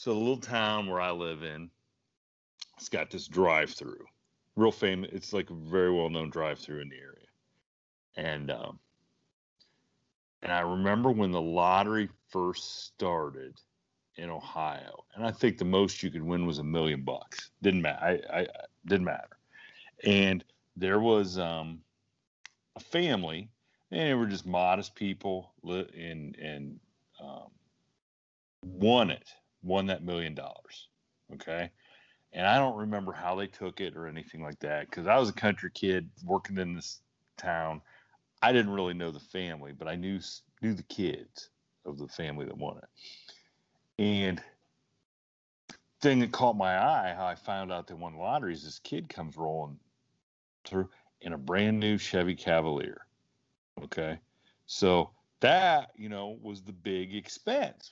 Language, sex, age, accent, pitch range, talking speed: English, male, 40-59, American, 80-100 Hz, 155 wpm